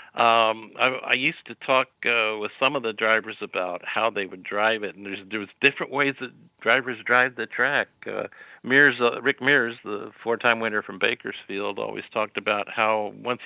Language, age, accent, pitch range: English, 50-69, American, 110-140 Hz